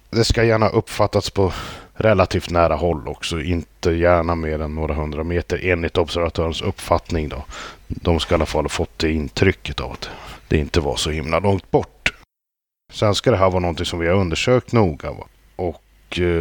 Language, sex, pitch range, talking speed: Swedish, male, 85-110 Hz, 185 wpm